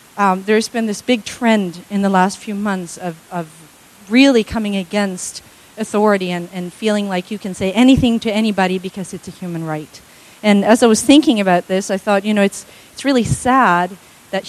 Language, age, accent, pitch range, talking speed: English, 40-59, American, 190-245 Hz, 200 wpm